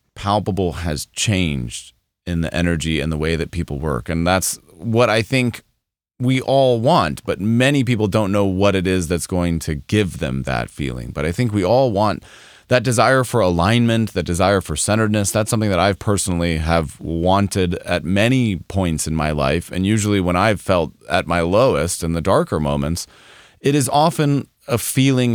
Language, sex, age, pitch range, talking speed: English, male, 30-49, 85-120 Hz, 185 wpm